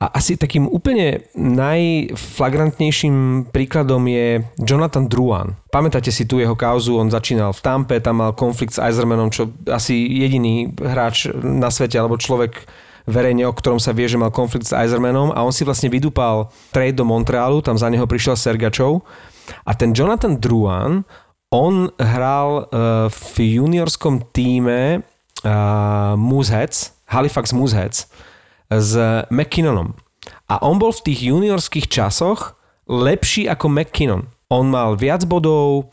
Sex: male